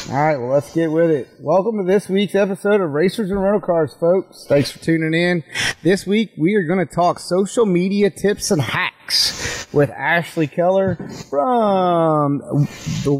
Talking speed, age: 175 wpm, 30-49